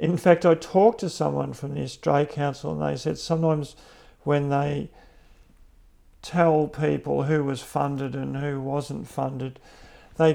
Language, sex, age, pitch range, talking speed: English, male, 50-69, 135-165 Hz, 150 wpm